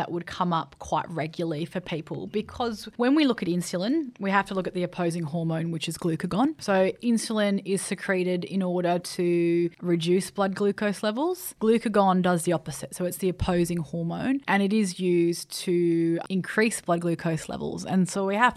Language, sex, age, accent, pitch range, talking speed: English, female, 20-39, Australian, 170-195 Hz, 185 wpm